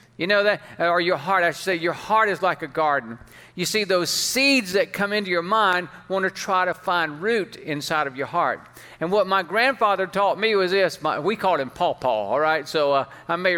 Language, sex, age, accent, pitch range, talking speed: English, male, 50-69, American, 165-210 Hz, 235 wpm